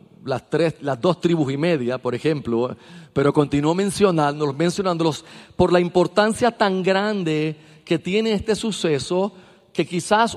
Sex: male